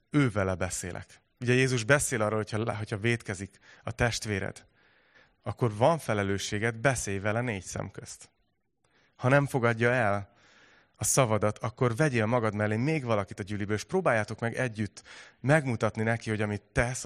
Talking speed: 150 wpm